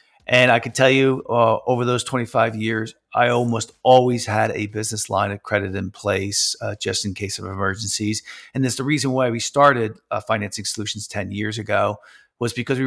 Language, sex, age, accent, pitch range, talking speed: English, male, 40-59, American, 110-125 Hz, 200 wpm